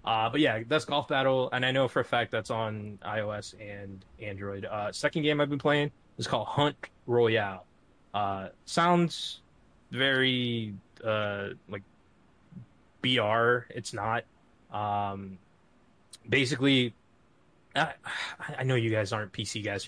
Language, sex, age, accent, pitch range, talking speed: English, male, 20-39, American, 105-130 Hz, 140 wpm